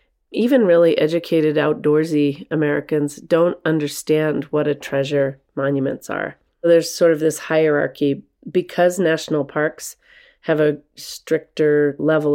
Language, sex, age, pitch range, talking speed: English, female, 30-49, 145-170 Hz, 115 wpm